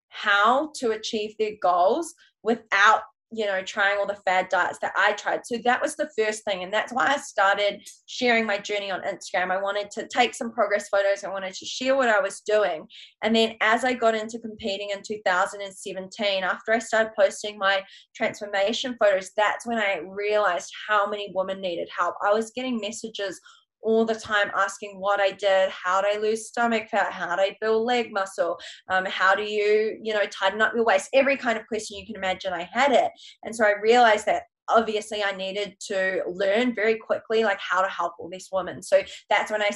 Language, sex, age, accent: English, female, 20-39, Australian